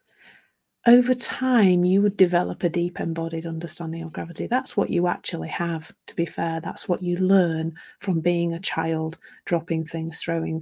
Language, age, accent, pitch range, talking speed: English, 30-49, British, 165-190 Hz, 170 wpm